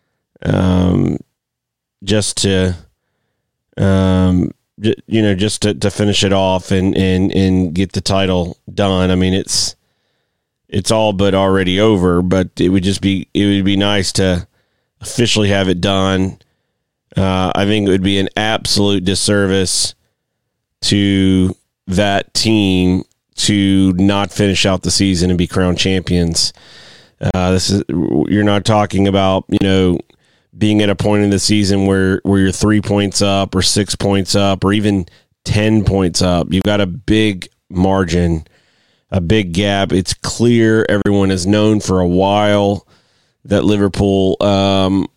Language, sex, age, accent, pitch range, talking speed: English, male, 30-49, American, 95-100 Hz, 150 wpm